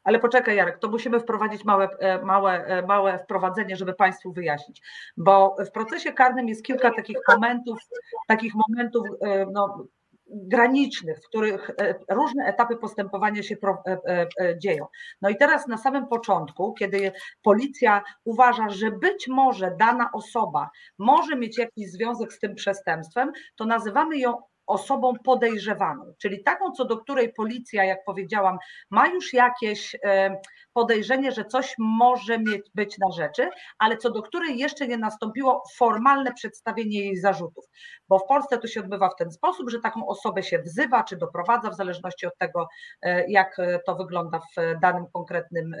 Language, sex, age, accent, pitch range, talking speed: Polish, female, 40-59, native, 195-250 Hz, 150 wpm